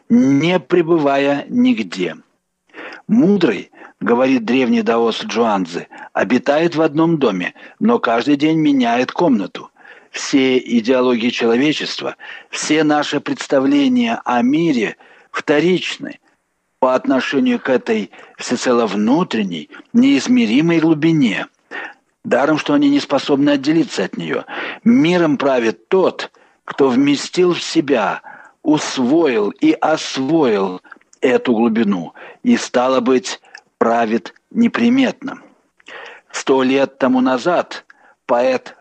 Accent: native